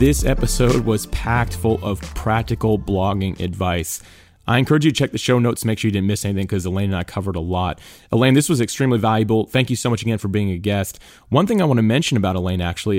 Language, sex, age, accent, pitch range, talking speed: English, male, 30-49, American, 95-120 Hz, 250 wpm